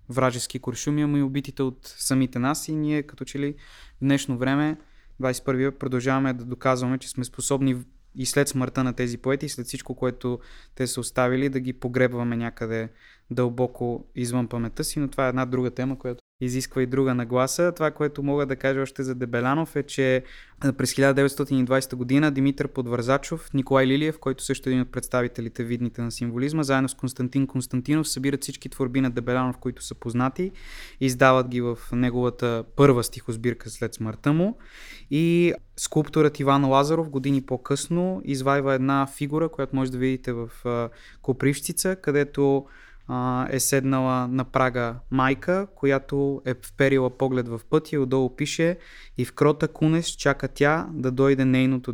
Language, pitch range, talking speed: Bulgarian, 125-140 Hz, 165 wpm